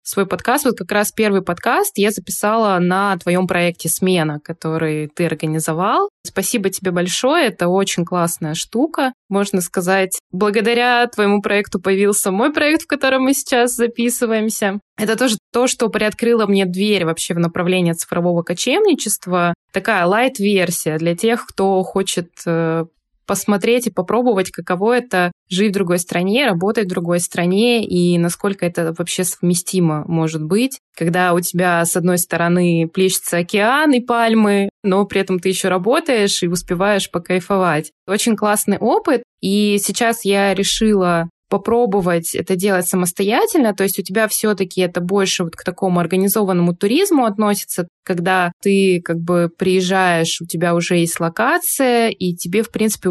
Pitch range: 175-220 Hz